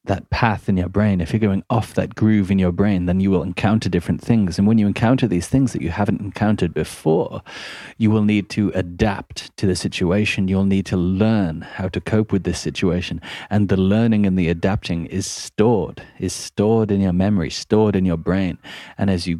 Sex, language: male, English